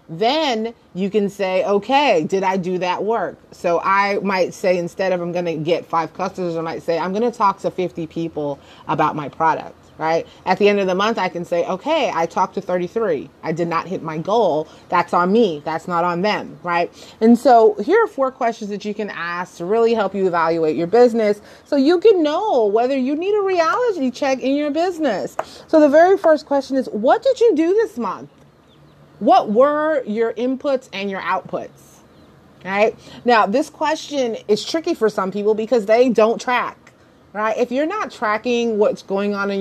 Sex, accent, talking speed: female, American, 205 wpm